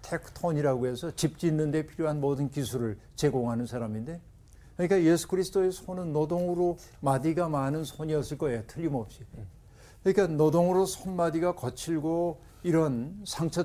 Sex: male